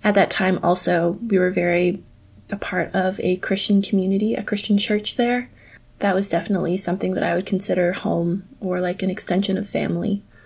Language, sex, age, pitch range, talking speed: English, female, 20-39, 175-200 Hz, 185 wpm